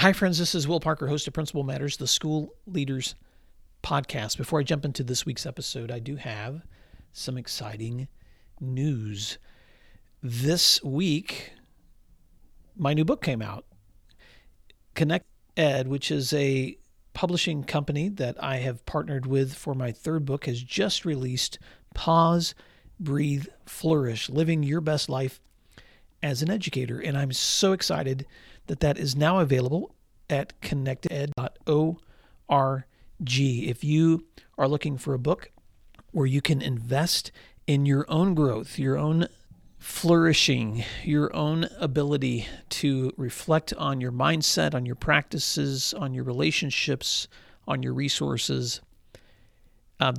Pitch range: 125-155 Hz